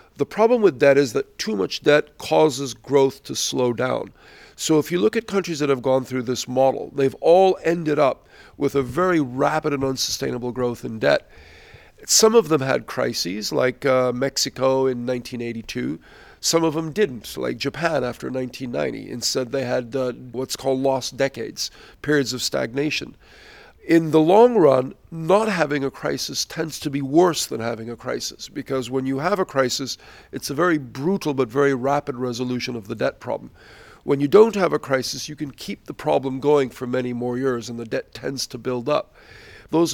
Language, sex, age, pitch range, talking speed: English, male, 50-69, 125-155 Hz, 190 wpm